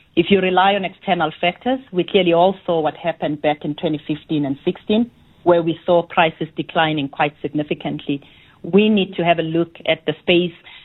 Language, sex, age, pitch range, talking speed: English, female, 40-59, 155-190 Hz, 185 wpm